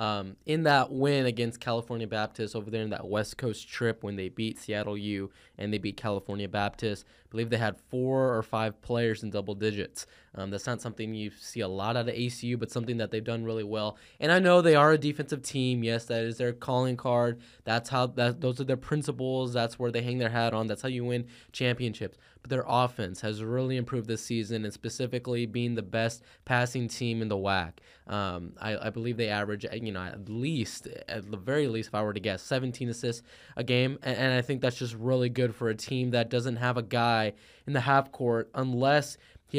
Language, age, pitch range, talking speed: English, 10-29, 110-125 Hz, 225 wpm